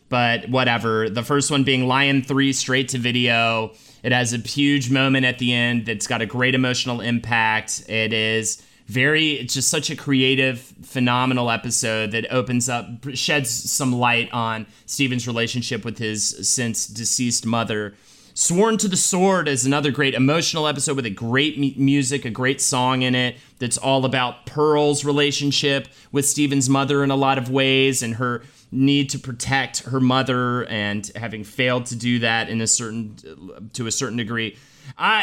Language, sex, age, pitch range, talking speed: English, male, 30-49, 120-145 Hz, 170 wpm